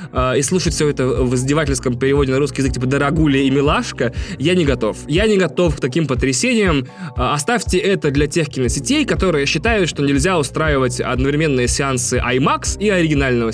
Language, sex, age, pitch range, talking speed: Russian, male, 20-39, 125-160 Hz, 170 wpm